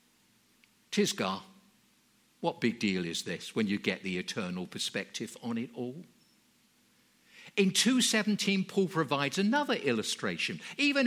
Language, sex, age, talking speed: English, male, 50-69, 120 wpm